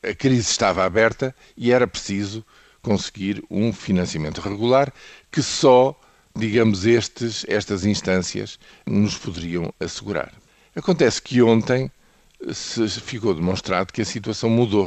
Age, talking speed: 50-69, 115 wpm